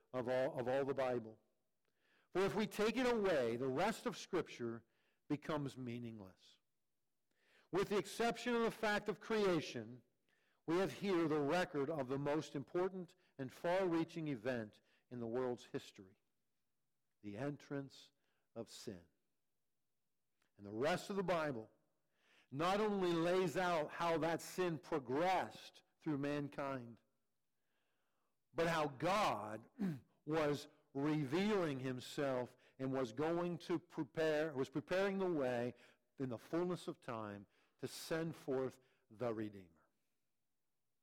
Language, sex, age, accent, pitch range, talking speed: English, male, 50-69, American, 130-175 Hz, 130 wpm